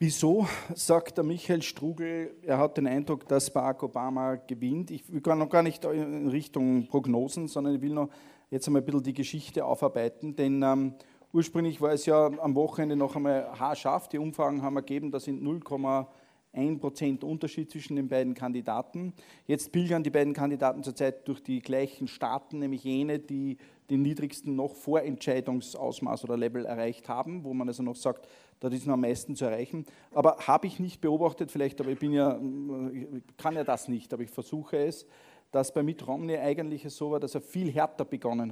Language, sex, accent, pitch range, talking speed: German, male, Austrian, 130-150 Hz, 185 wpm